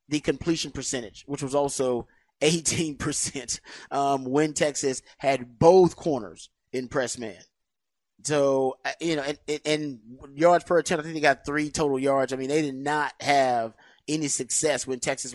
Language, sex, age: English, male, 30-49